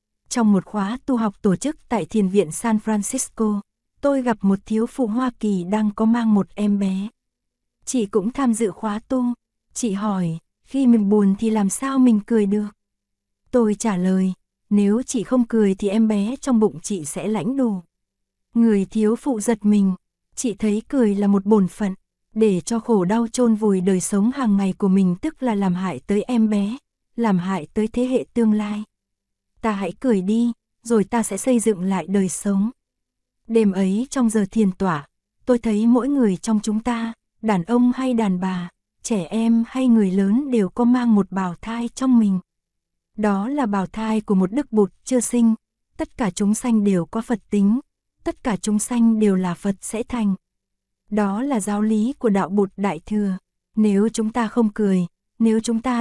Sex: female